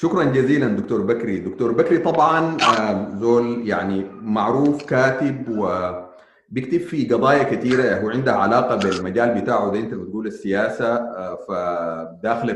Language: Arabic